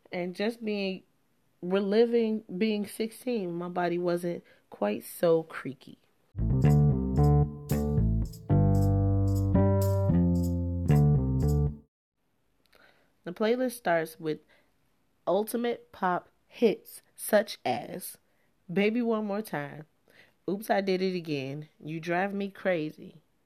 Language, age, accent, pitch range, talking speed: English, 30-49, American, 155-190 Hz, 85 wpm